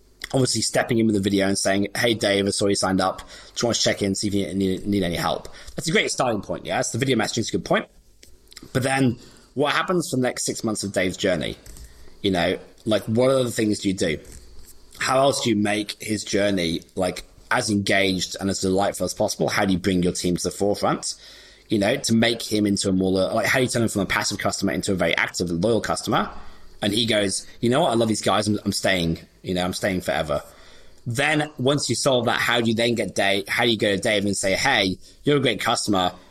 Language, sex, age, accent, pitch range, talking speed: English, male, 30-49, British, 95-120 Hz, 255 wpm